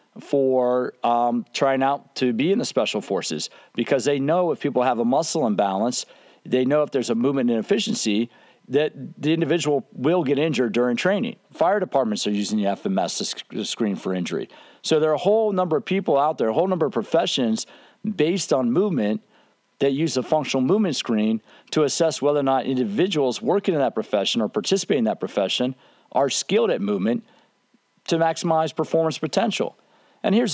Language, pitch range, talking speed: English, 120-165 Hz, 185 wpm